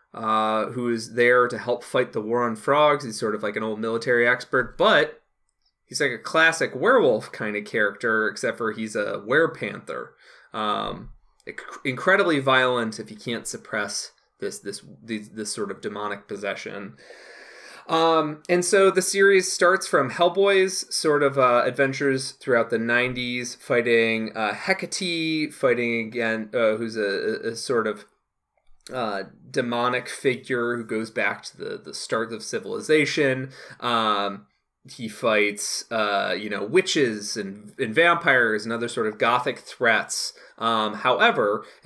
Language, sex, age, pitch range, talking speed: English, male, 20-39, 110-155 Hz, 150 wpm